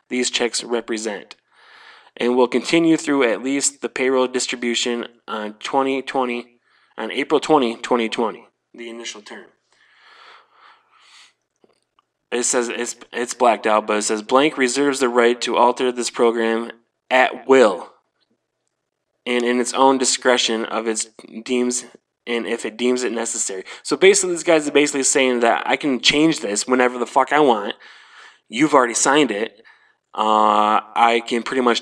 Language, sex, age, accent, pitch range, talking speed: English, male, 20-39, American, 115-145 Hz, 150 wpm